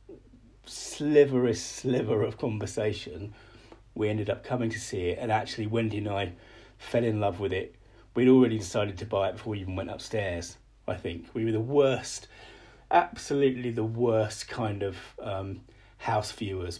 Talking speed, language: 165 wpm, English